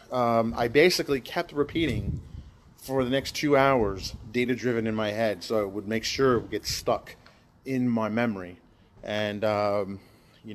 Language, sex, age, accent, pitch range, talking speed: English, male, 30-49, American, 105-130 Hz, 165 wpm